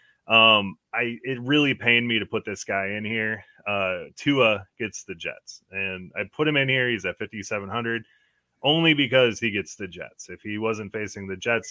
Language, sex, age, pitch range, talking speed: English, male, 30-49, 100-120 Hz, 195 wpm